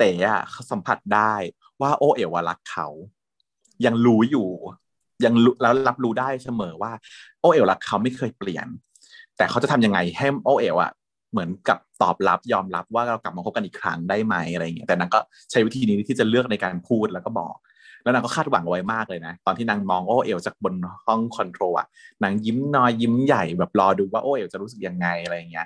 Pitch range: 95-130 Hz